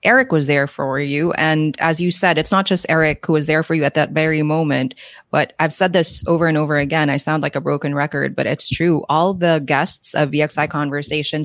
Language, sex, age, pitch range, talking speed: English, female, 20-39, 150-175 Hz, 235 wpm